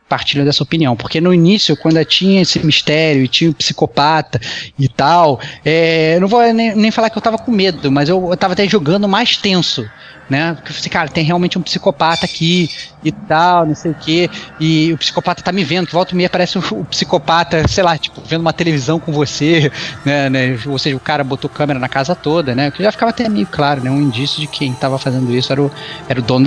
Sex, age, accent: male, 20-39, Brazilian